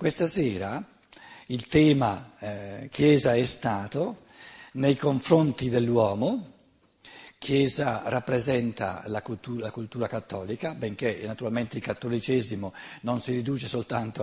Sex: male